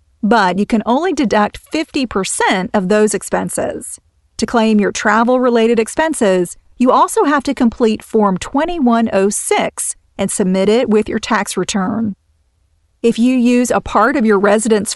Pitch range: 200-245 Hz